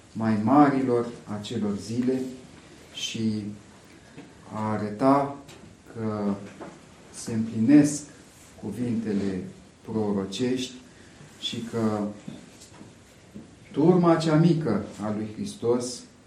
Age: 40-59